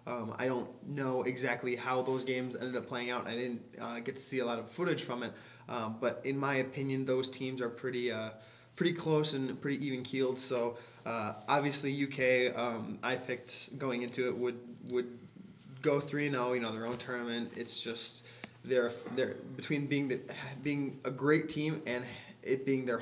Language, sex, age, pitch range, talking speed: English, male, 20-39, 120-135 Hz, 200 wpm